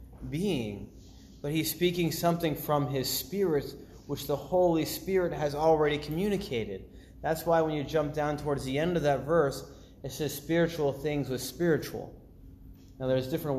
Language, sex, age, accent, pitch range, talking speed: English, male, 30-49, American, 120-180 Hz, 160 wpm